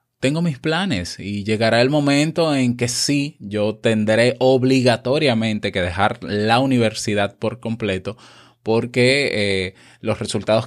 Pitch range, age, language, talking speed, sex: 100-130 Hz, 20-39, Spanish, 130 wpm, male